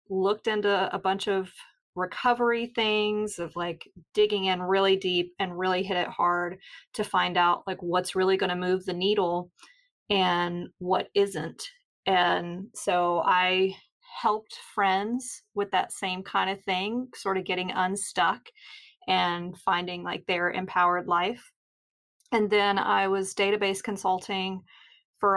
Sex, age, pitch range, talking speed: female, 30-49, 180-205 Hz, 140 wpm